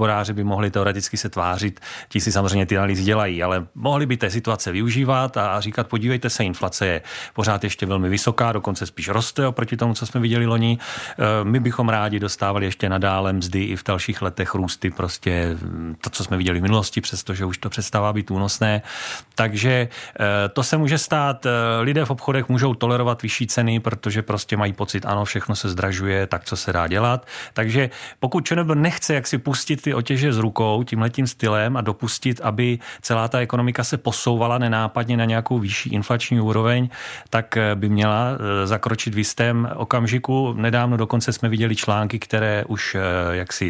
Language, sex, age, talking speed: Czech, male, 40-59, 175 wpm